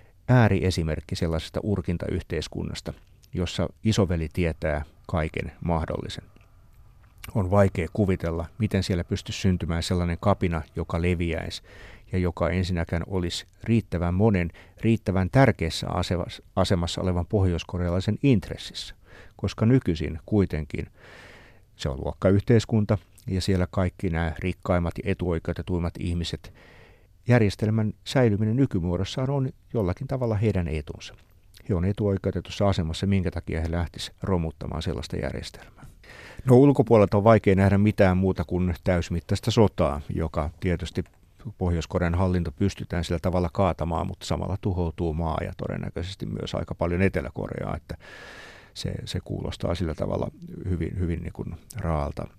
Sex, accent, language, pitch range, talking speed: male, native, Finnish, 85-105 Hz, 115 wpm